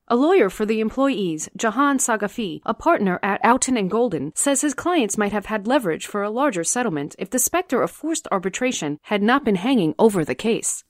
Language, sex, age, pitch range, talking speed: English, female, 40-59, 180-270 Hz, 200 wpm